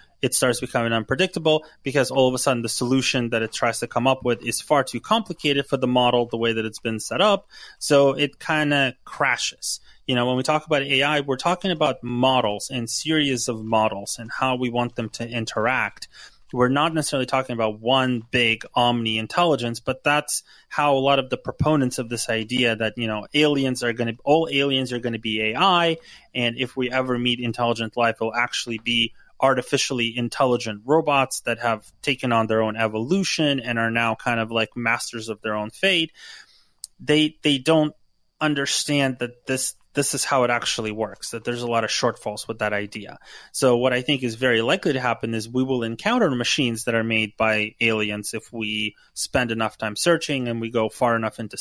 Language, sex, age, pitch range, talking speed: English, male, 20-39, 115-140 Hz, 205 wpm